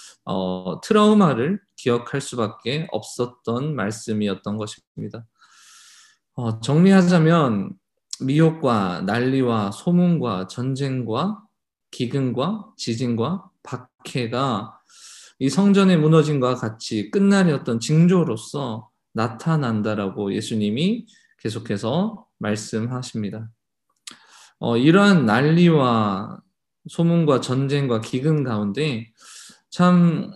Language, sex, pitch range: Korean, male, 115-180 Hz